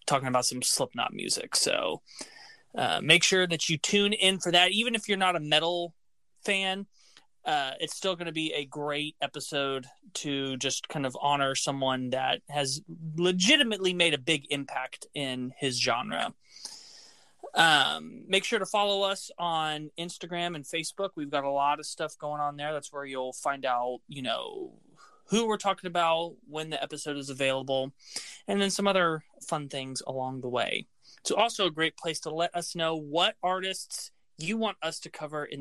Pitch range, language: 140-185 Hz, English